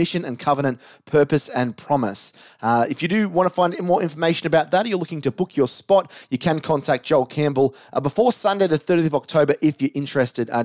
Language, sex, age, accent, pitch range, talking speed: English, male, 30-49, Australian, 125-155 Hz, 225 wpm